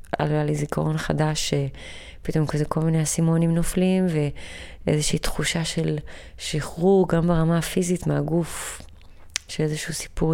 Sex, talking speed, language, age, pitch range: female, 120 wpm, Hebrew, 20-39, 130-165 Hz